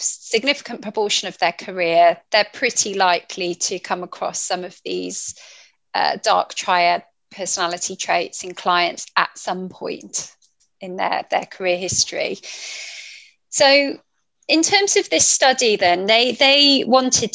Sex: female